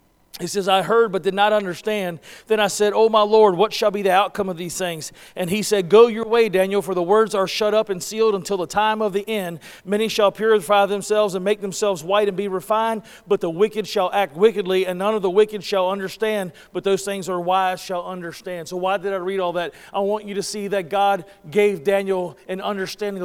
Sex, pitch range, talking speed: male, 185-215 Hz, 240 wpm